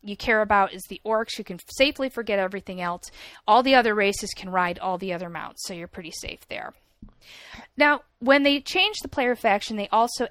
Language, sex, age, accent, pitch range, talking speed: English, female, 40-59, American, 185-240 Hz, 210 wpm